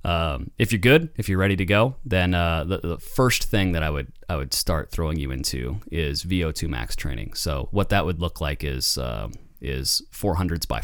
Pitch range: 75-100 Hz